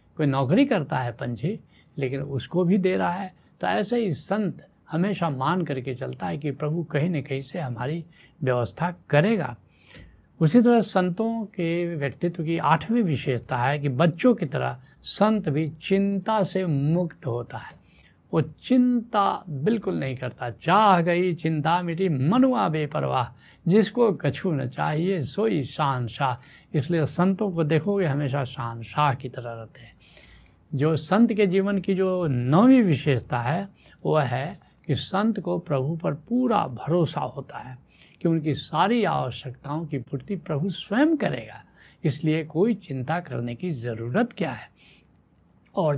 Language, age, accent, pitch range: Hindi, 70-89, native, 135-190 Hz